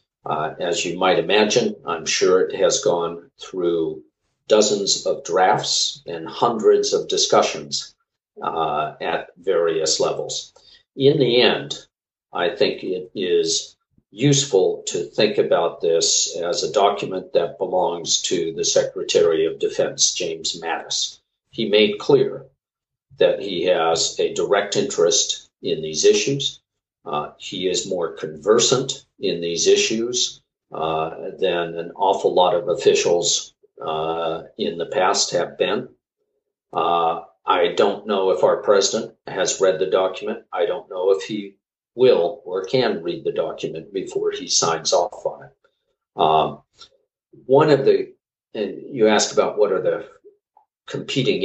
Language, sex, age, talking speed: English, male, 50-69, 140 wpm